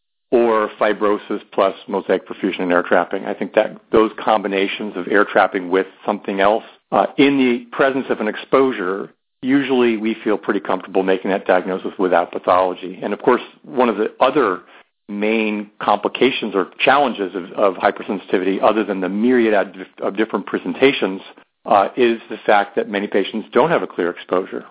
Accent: American